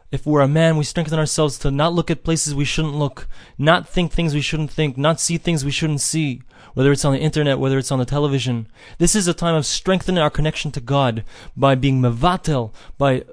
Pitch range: 130-170 Hz